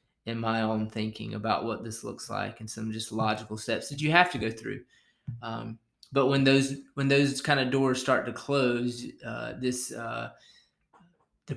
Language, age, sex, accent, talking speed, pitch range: English, 20-39, male, American, 185 wpm, 115-130 Hz